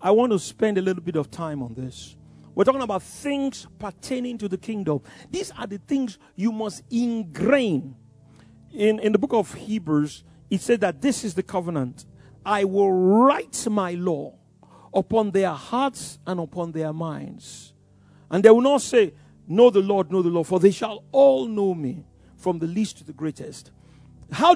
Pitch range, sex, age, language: 190-290 Hz, male, 50-69, English